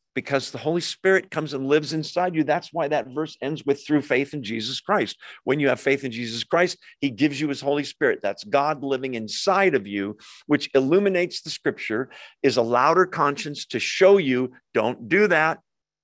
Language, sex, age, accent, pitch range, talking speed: English, male, 50-69, American, 125-165 Hz, 200 wpm